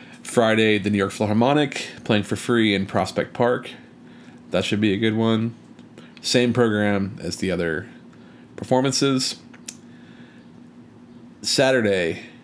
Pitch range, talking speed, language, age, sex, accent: 105-125 Hz, 115 wpm, English, 30-49, male, American